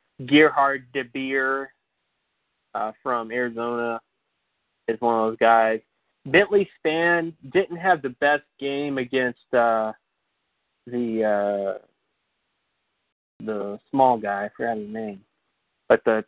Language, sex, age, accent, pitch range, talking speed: English, male, 20-39, American, 115-135 Hz, 115 wpm